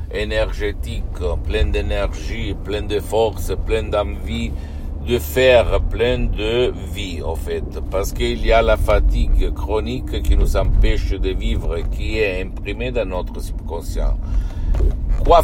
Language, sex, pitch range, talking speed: Italian, male, 80-105 Hz, 130 wpm